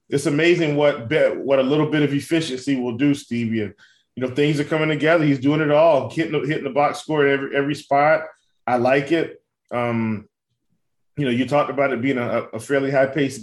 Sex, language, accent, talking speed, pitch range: male, English, American, 215 wpm, 125-150 Hz